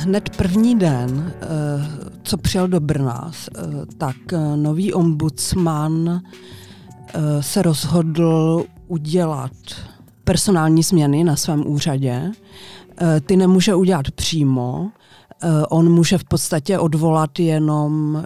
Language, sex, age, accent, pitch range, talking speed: Czech, female, 40-59, native, 145-170 Hz, 90 wpm